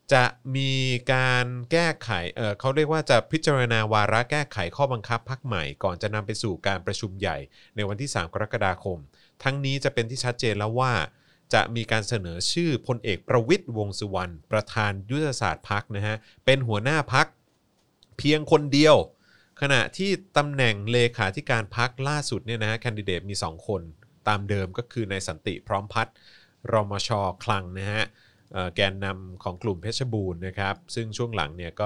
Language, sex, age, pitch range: Thai, male, 30-49, 95-120 Hz